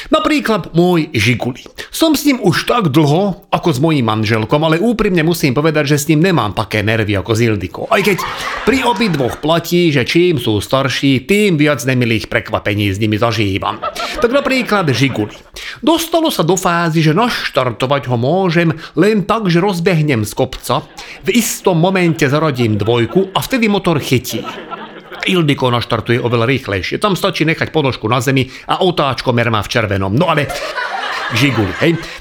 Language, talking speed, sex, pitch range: Slovak, 160 wpm, male, 125-185 Hz